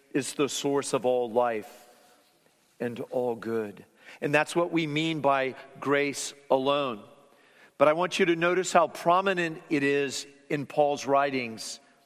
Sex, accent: male, American